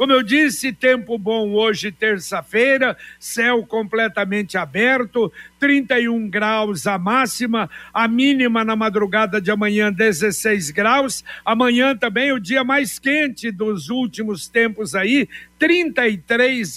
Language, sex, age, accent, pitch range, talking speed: Portuguese, male, 60-79, Brazilian, 215-260 Hz, 120 wpm